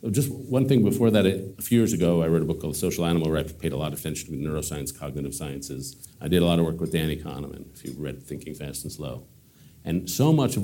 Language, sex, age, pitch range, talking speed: English, male, 50-69, 80-100 Hz, 265 wpm